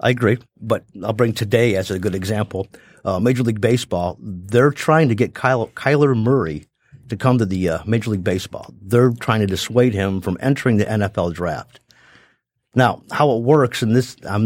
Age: 50-69